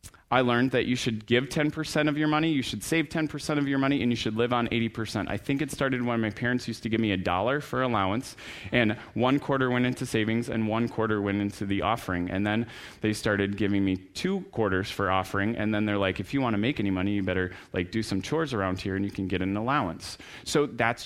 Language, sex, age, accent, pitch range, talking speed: English, male, 30-49, American, 100-135 Hz, 250 wpm